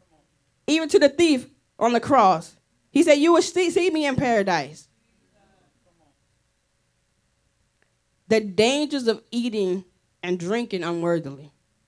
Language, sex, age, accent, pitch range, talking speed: English, female, 10-29, American, 195-280 Hz, 115 wpm